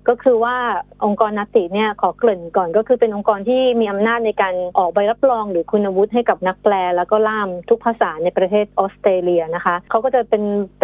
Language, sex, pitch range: Thai, female, 195-235 Hz